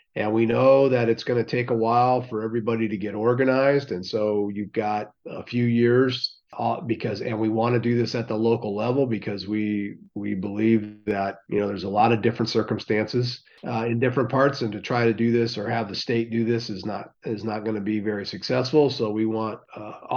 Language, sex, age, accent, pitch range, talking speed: English, male, 40-59, American, 105-120 Hz, 225 wpm